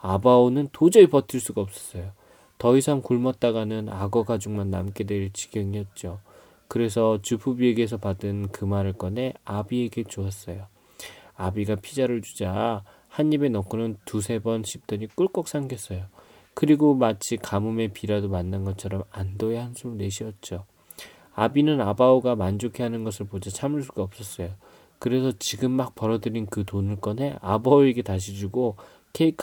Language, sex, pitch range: Korean, male, 100-130 Hz